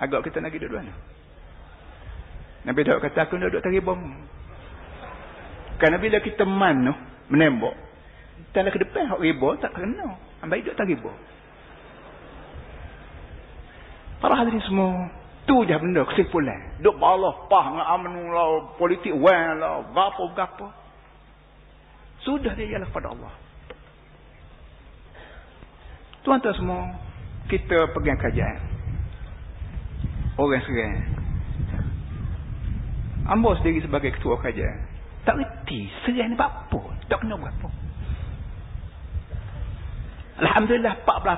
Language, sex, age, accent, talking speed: Malayalam, male, 50-69, Indonesian, 110 wpm